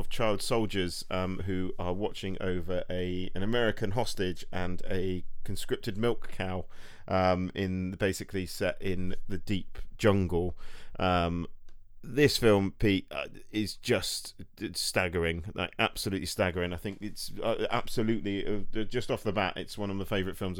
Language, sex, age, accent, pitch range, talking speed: English, male, 40-59, British, 90-105 Hz, 135 wpm